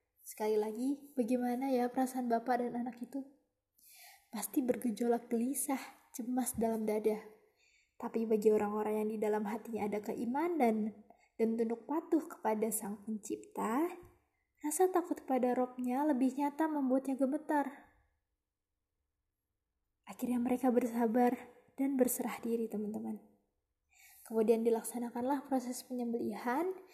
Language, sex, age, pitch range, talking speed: Indonesian, female, 20-39, 220-270 Hz, 110 wpm